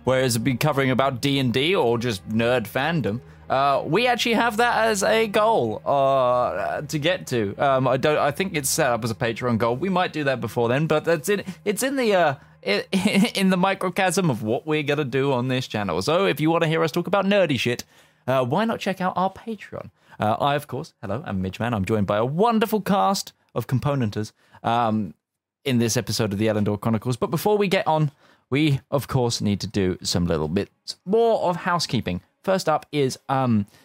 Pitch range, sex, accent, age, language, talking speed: 110-155 Hz, male, British, 20-39, English, 215 wpm